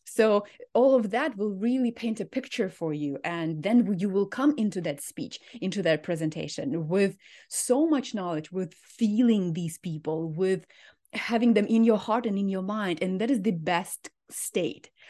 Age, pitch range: 30-49, 185-245 Hz